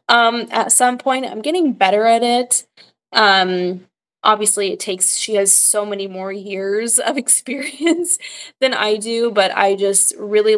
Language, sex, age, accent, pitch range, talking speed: English, female, 20-39, American, 190-220 Hz, 160 wpm